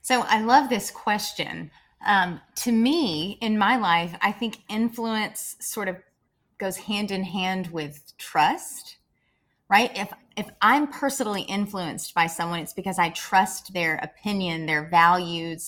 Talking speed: 145 wpm